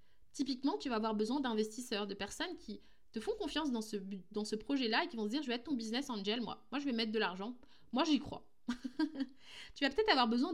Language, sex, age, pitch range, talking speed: French, female, 20-39, 230-300 Hz, 250 wpm